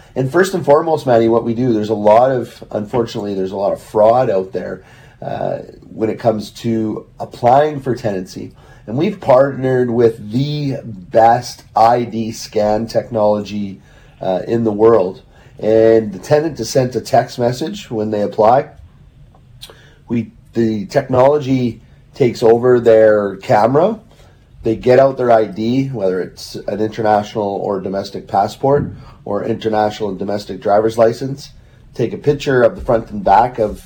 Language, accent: English, American